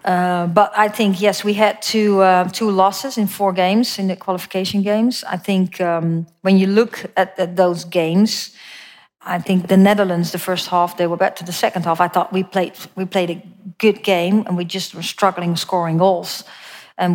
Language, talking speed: English, 205 wpm